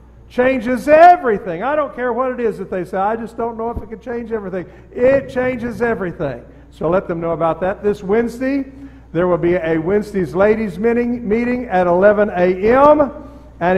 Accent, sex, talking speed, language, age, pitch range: American, male, 185 wpm, English, 50-69, 170-230 Hz